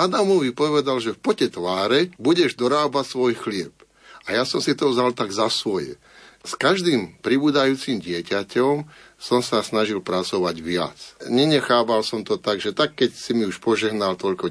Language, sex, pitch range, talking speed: Slovak, male, 105-145 Hz, 165 wpm